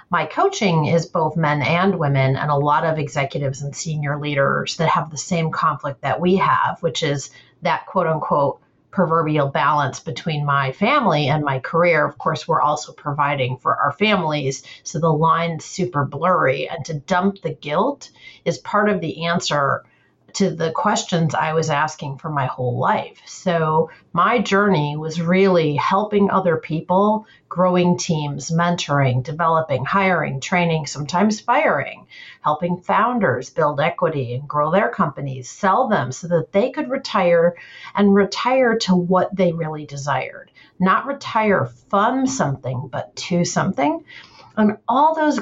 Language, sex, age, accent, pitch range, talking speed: English, female, 40-59, American, 150-195 Hz, 155 wpm